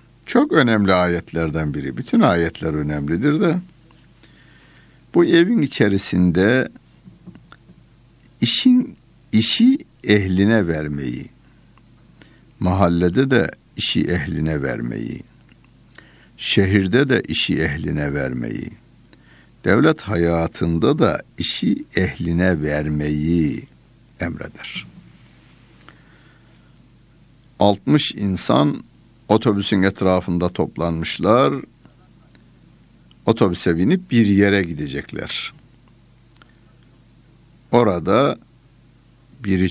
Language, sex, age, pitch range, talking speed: Turkish, male, 60-79, 80-105 Hz, 65 wpm